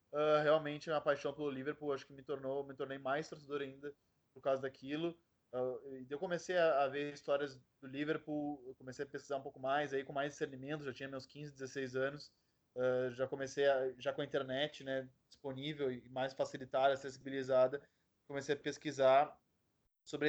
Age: 20-39